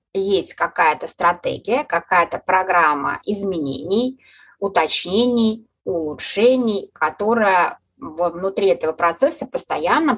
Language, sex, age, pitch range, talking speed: Russian, female, 20-39, 165-240 Hz, 75 wpm